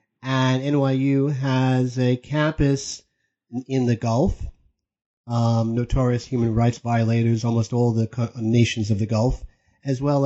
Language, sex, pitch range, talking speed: English, male, 120-135 Hz, 130 wpm